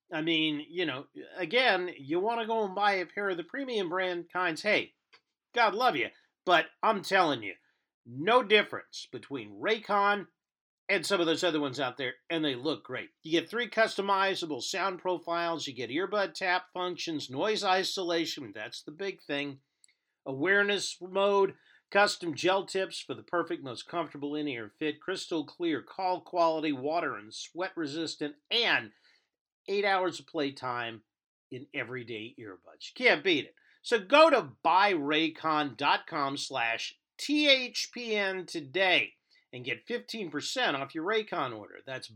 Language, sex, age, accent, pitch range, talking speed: English, male, 50-69, American, 155-215 Hz, 150 wpm